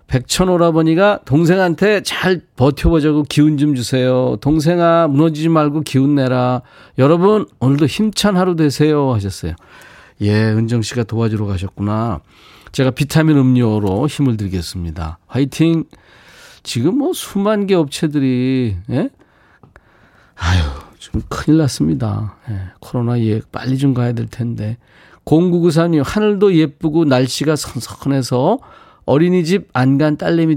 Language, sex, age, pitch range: Korean, male, 40-59, 115-155 Hz